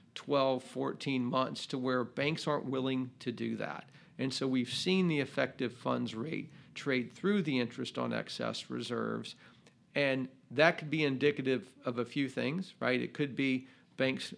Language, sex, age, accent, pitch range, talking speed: English, male, 50-69, American, 125-150 Hz, 165 wpm